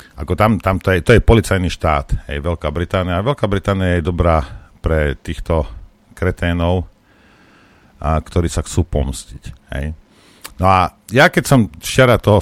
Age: 50-69